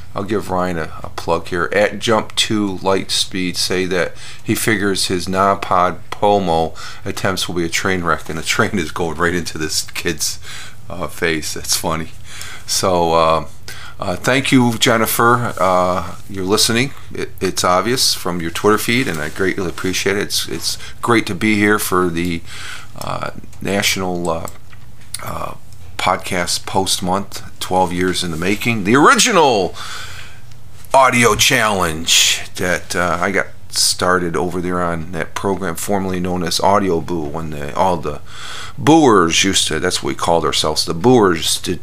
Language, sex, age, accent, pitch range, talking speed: English, male, 40-59, American, 85-110 Hz, 165 wpm